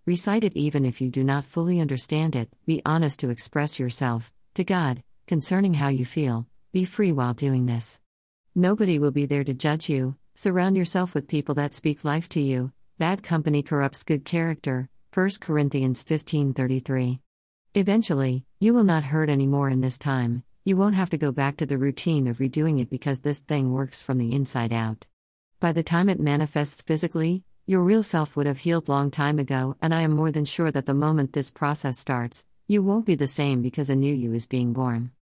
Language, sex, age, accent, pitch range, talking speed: English, female, 50-69, American, 130-160 Hz, 200 wpm